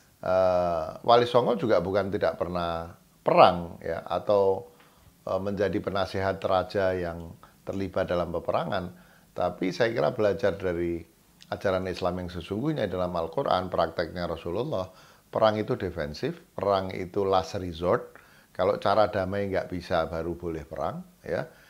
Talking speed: 130 wpm